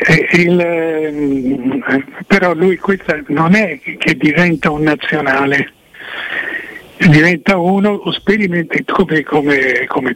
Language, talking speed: Italian, 85 wpm